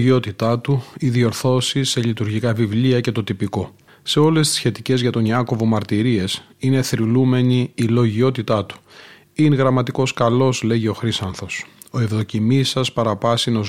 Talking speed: 130 wpm